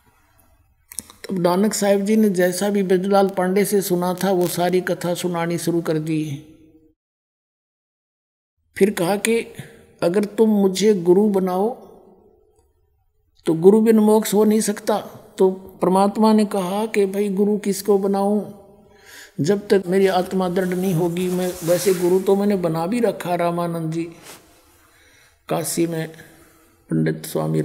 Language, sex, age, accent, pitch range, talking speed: Hindi, male, 60-79, native, 165-205 Hz, 135 wpm